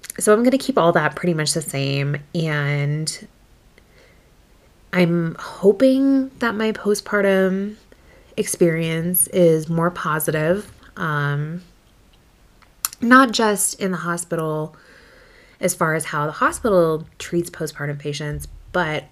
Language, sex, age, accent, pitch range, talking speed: English, female, 20-39, American, 150-180 Hz, 115 wpm